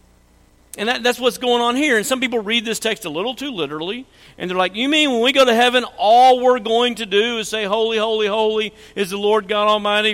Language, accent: English, American